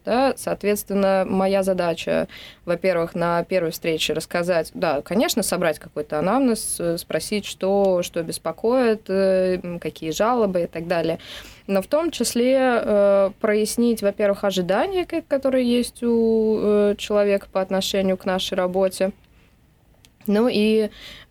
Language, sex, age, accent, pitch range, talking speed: Russian, female, 20-39, native, 175-225 Hz, 115 wpm